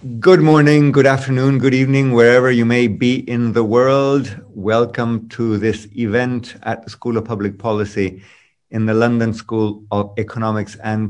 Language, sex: English, male